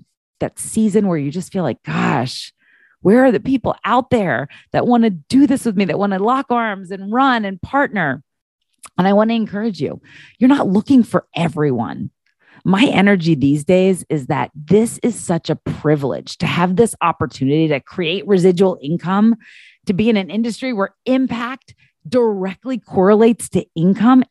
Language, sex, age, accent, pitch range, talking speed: English, female, 30-49, American, 155-225 Hz, 175 wpm